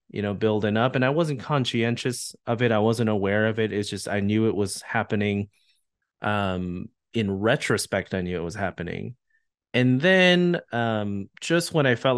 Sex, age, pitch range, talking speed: male, 20-39, 95-120 Hz, 180 wpm